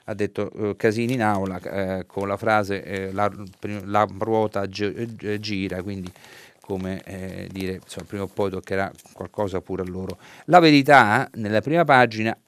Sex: male